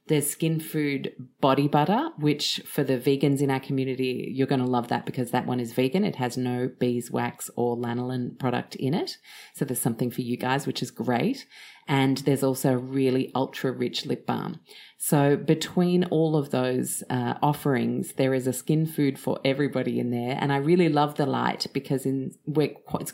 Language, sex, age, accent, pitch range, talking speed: English, female, 30-49, Australian, 125-155 Hz, 190 wpm